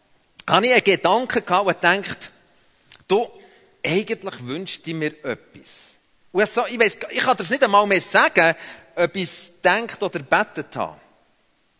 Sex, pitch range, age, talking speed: male, 175-240 Hz, 40-59, 155 wpm